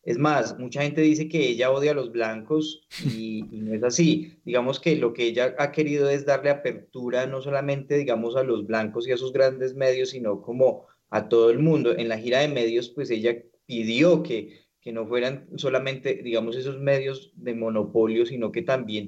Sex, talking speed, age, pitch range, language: male, 200 wpm, 30-49, 110-135 Hz, Spanish